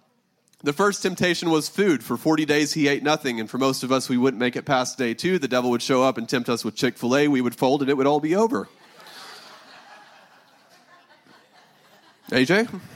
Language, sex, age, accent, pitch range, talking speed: English, male, 30-49, American, 130-165 Hz, 200 wpm